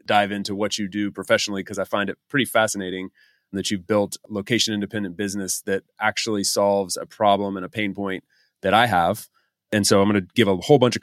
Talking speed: 210 wpm